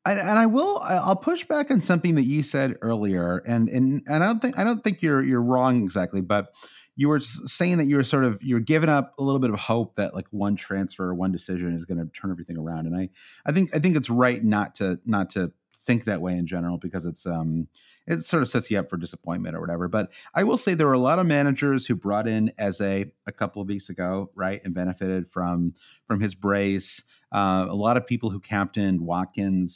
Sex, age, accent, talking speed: male, 30-49, American, 240 wpm